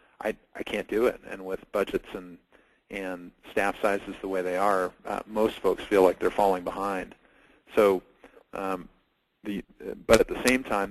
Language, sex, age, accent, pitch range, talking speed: English, male, 40-59, American, 95-105 Hz, 175 wpm